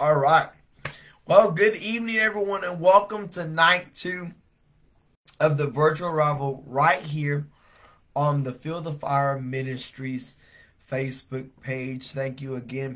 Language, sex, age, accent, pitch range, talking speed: English, male, 20-39, American, 130-150 Hz, 130 wpm